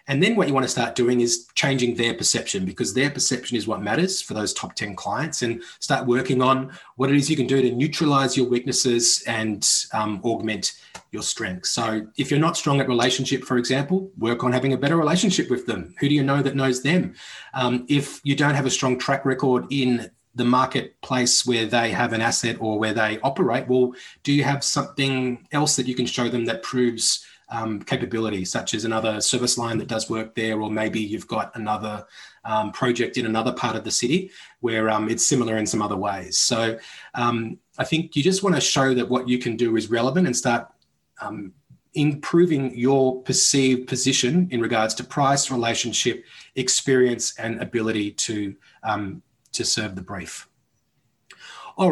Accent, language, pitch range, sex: Australian, English, 115-140 Hz, male